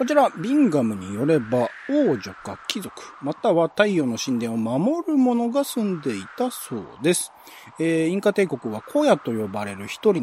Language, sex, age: Japanese, male, 40-59